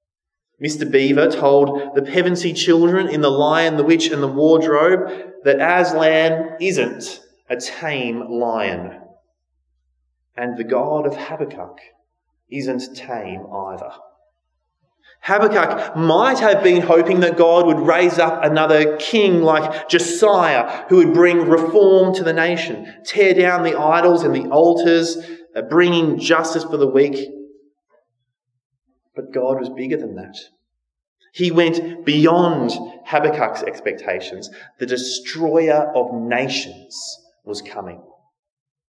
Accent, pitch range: Australian, 135-190 Hz